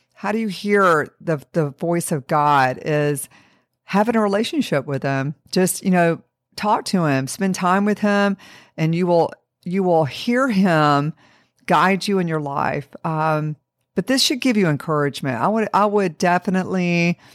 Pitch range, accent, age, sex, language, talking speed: 150-185 Hz, American, 50-69, female, English, 170 wpm